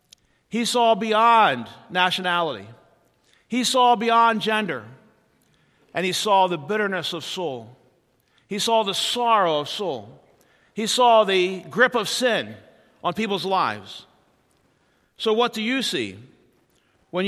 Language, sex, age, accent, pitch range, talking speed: English, male, 50-69, American, 185-230 Hz, 125 wpm